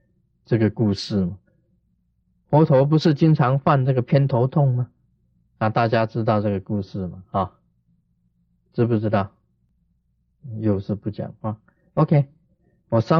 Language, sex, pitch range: Chinese, male, 105-160 Hz